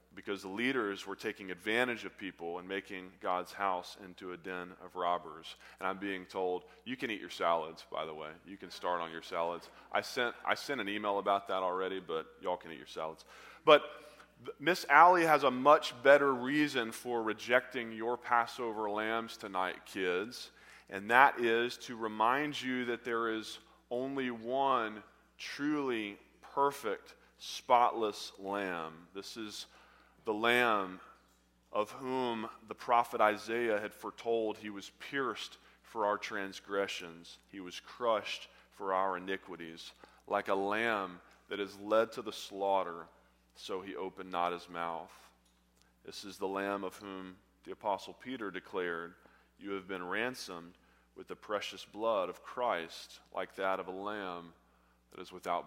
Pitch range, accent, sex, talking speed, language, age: 90-115 Hz, American, male, 155 wpm, English, 30-49